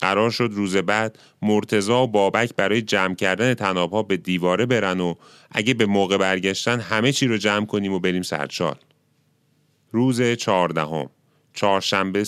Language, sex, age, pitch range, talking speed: Persian, male, 30-49, 100-120 Hz, 145 wpm